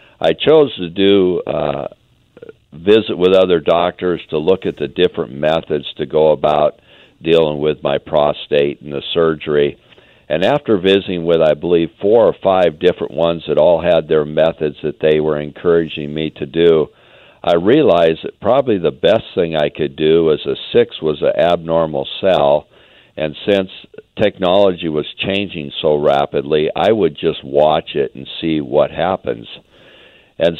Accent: American